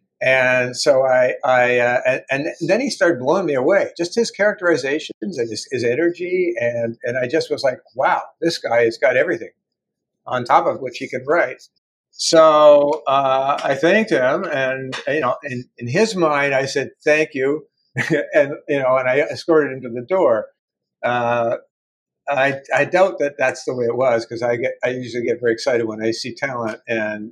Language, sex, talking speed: English, male, 195 wpm